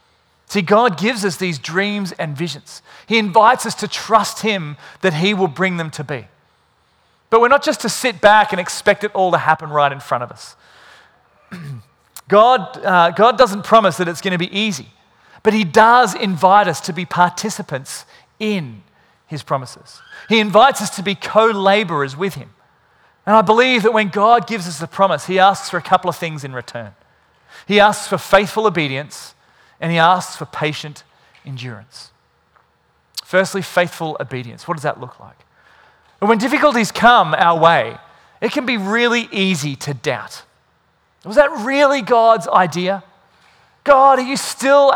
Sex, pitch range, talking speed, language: male, 165-225 Hz, 170 wpm, English